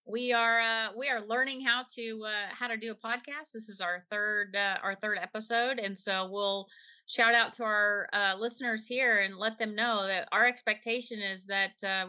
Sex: female